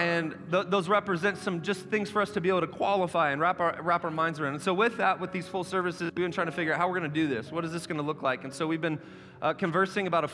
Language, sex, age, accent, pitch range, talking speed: English, male, 30-49, American, 150-185 Hz, 315 wpm